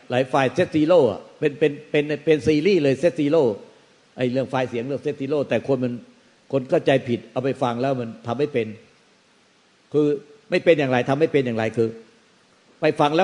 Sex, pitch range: male, 135-165 Hz